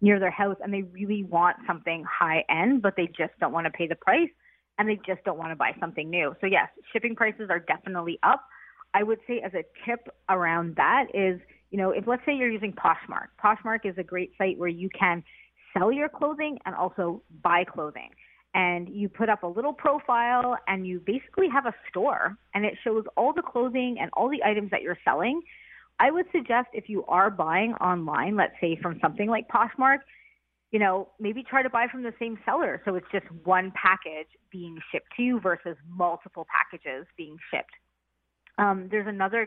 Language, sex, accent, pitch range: English, female, American, 175-230 Hz